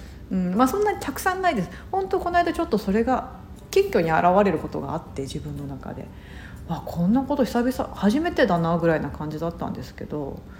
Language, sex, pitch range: Japanese, female, 160-240 Hz